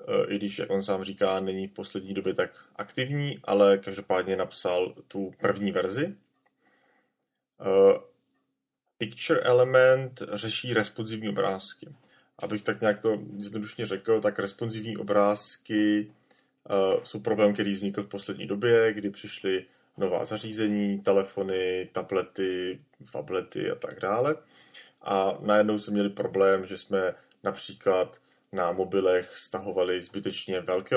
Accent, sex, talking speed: native, male, 120 wpm